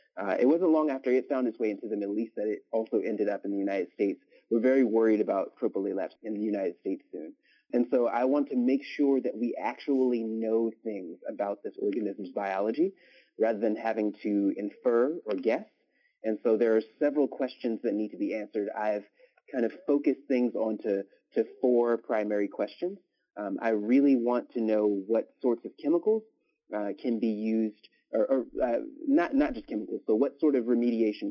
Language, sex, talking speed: English, male, 195 wpm